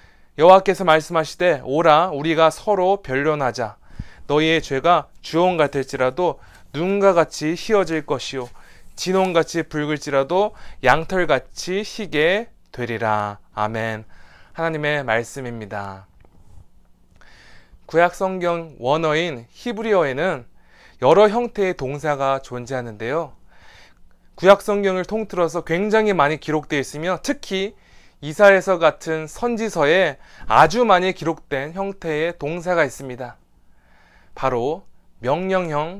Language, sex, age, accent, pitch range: Korean, male, 20-39, native, 130-185 Hz